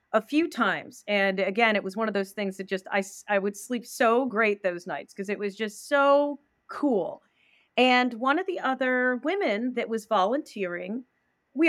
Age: 30-49